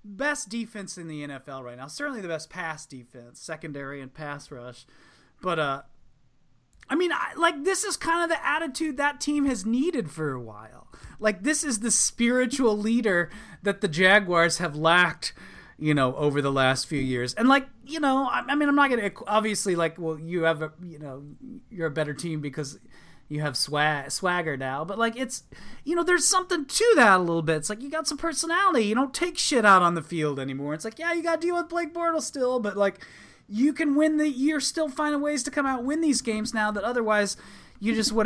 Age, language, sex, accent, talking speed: 30-49, English, male, American, 225 wpm